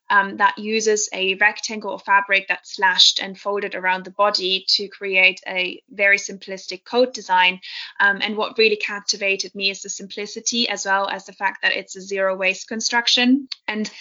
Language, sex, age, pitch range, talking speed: English, female, 20-39, 195-220 Hz, 180 wpm